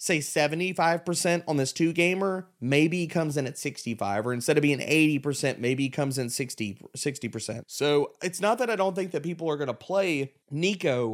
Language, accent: English, American